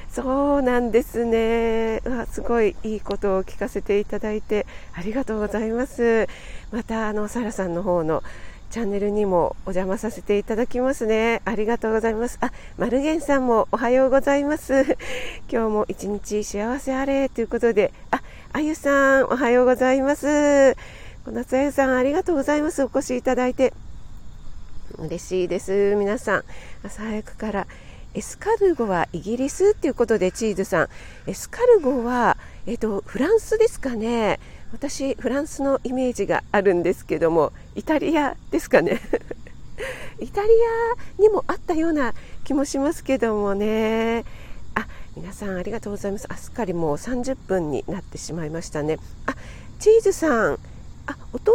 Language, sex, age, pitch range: Japanese, female, 40-59, 210-280 Hz